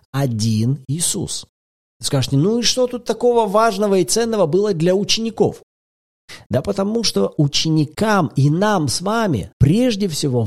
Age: 40-59